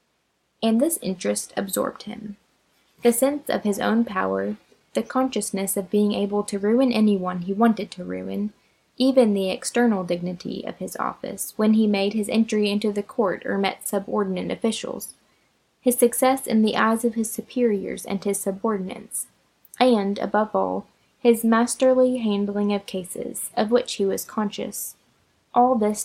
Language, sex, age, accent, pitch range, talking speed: English, female, 20-39, American, 200-240 Hz, 155 wpm